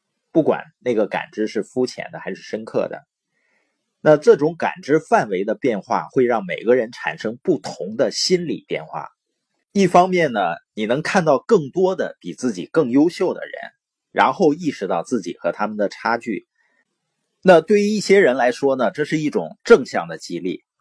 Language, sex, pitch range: Chinese, male, 125-195 Hz